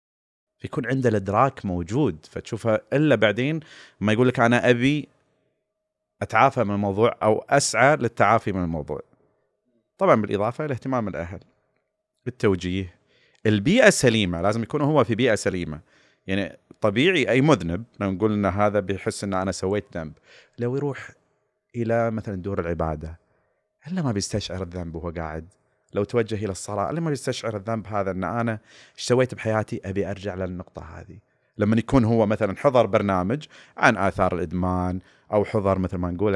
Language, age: Arabic, 30-49